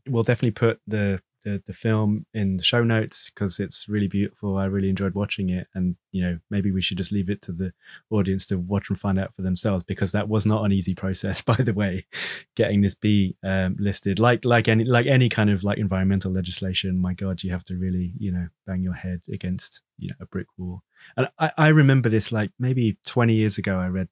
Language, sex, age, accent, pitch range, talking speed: English, male, 20-39, British, 95-110 Hz, 235 wpm